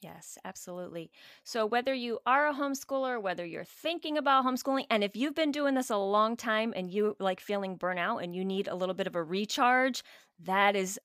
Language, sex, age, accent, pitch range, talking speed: English, female, 30-49, American, 185-240 Hz, 205 wpm